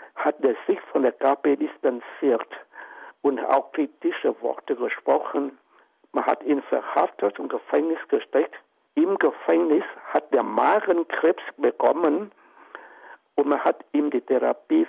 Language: German